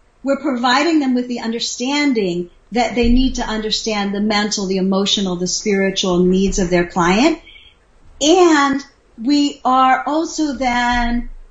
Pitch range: 210-275 Hz